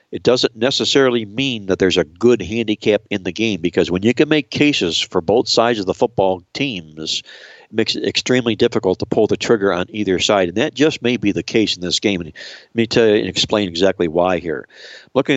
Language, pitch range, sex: English, 90-110 Hz, male